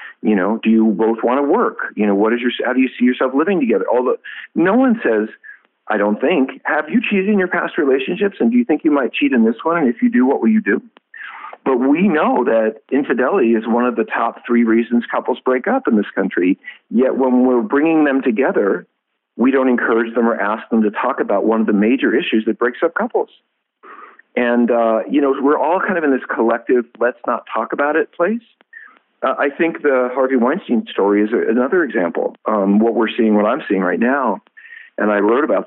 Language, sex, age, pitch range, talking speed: English, male, 50-69, 110-165 Hz, 225 wpm